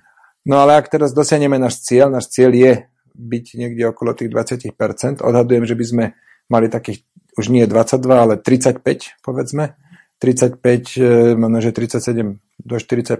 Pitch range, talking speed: 120-140 Hz, 150 wpm